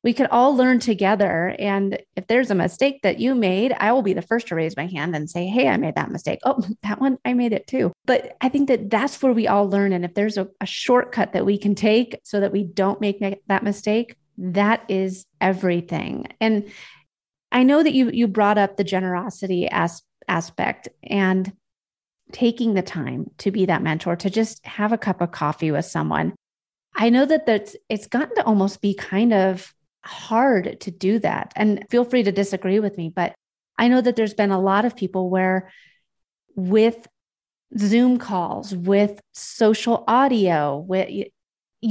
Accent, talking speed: American, 190 wpm